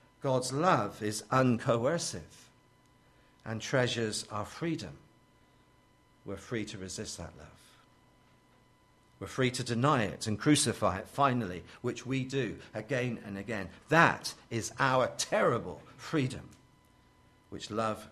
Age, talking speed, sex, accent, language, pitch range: 50-69, 120 wpm, male, British, English, 100-130 Hz